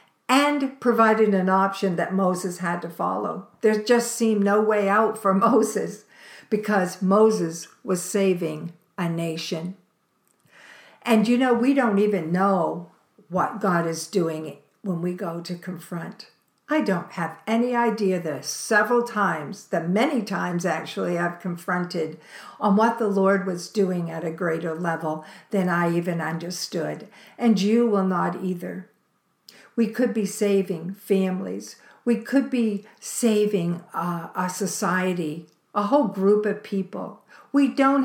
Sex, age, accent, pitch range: female, 60-79, American, 175-220 Hz